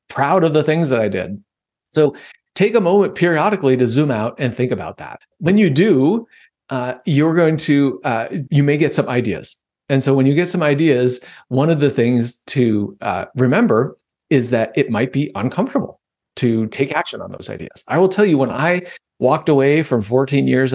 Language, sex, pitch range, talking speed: English, male, 125-170 Hz, 200 wpm